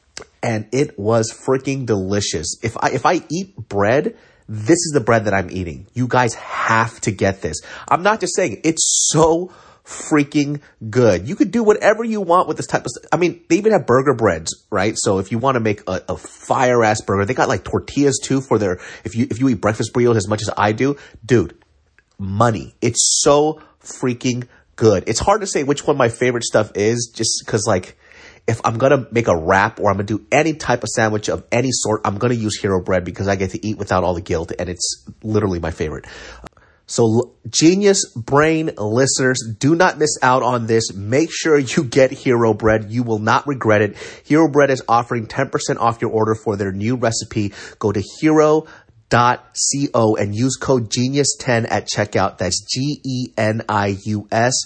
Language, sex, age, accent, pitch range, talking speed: English, male, 30-49, American, 110-140 Hz, 205 wpm